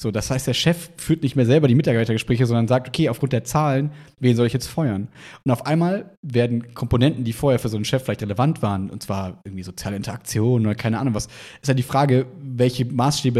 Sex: male